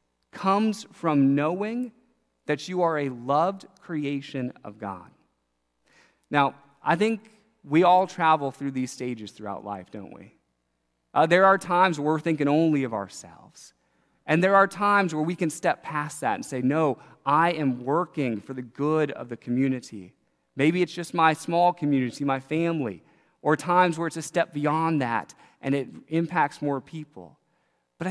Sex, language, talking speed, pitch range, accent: male, English, 165 wpm, 135-175 Hz, American